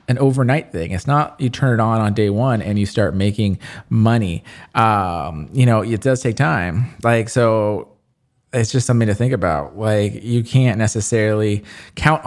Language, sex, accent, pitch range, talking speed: English, male, American, 105-135 Hz, 180 wpm